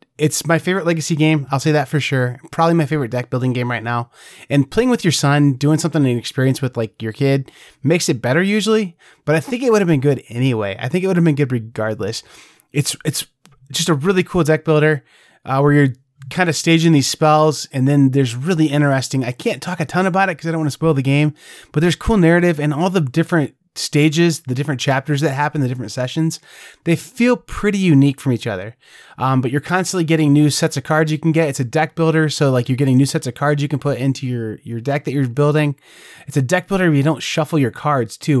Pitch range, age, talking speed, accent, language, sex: 130-165 Hz, 20-39, 245 wpm, American, English, male